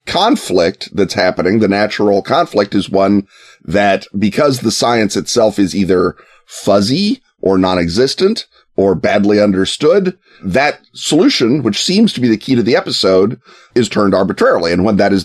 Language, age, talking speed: English, 30-49, 155 wpm